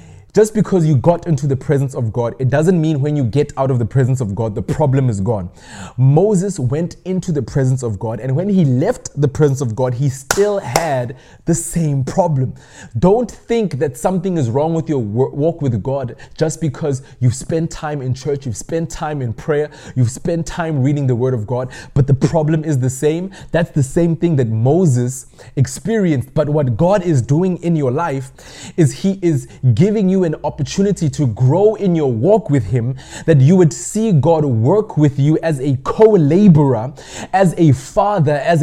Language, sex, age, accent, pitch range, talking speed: English, male, 20-39, South African, 135-180 Hz, 195 wpm